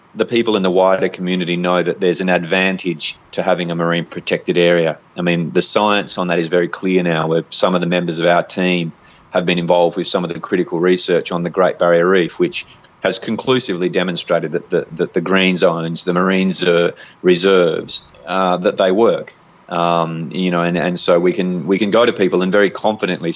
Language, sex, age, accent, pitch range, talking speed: English, male, 30-49, Australian, 90-100 Hz, 215 wpm